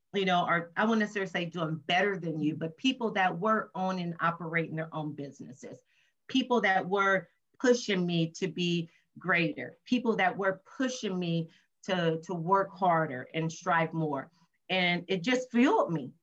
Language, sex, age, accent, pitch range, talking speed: English, female, 40-59, American, 165-220 Hz, 170 wpm